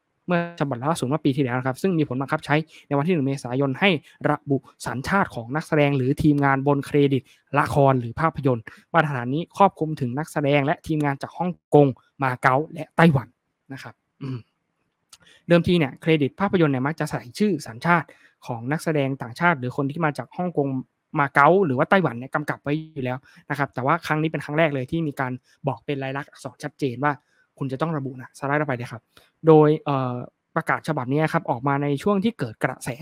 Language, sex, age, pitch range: Thai, male, 20-39, 135-160 Hz